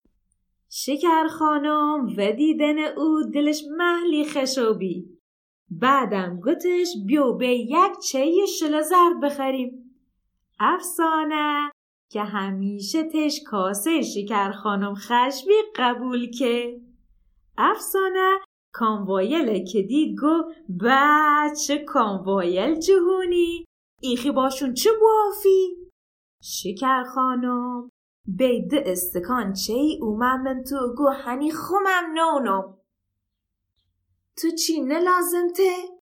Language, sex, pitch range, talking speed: Persian, female, 220-325 Hz, 90 wpm